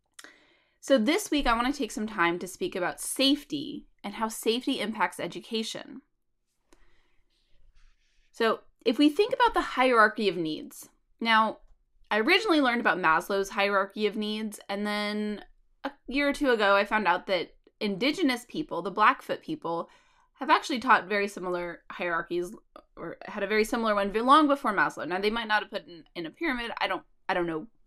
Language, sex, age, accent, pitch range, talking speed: English, female, 20-39, American, 185-270 Hz, 180 wpm